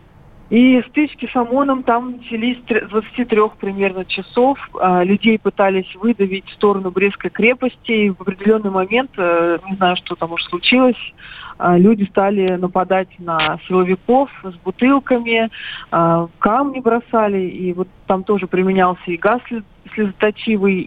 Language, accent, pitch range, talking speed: Russian, native, 185-225 Hz, 125 wpm